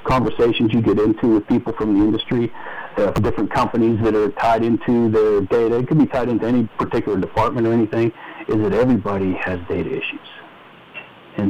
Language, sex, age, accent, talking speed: English, male, 50-69, American, 185 wpm